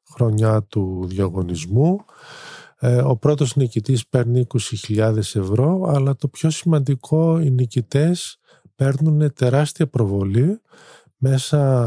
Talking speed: 95 wpm